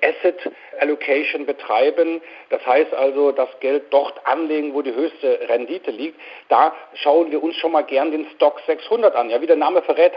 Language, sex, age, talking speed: German, male, 50-69, 185 wpm